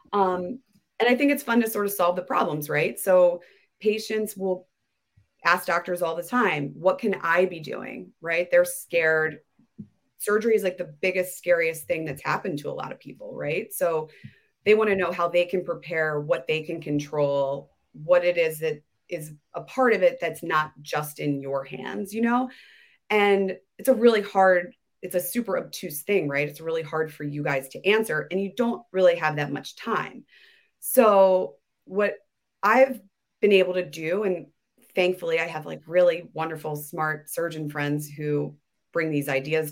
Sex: female